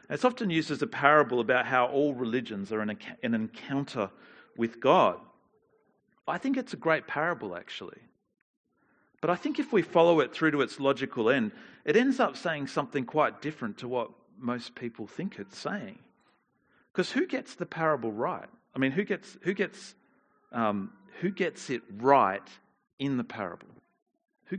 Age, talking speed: 40-59, 175 wpm